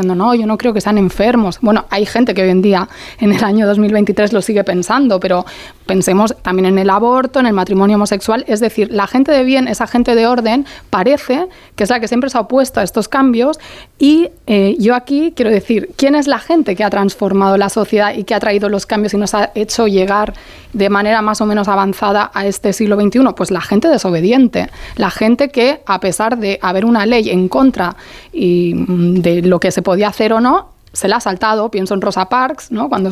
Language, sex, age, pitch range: Spanish, female, 20-39, 195-235 Hz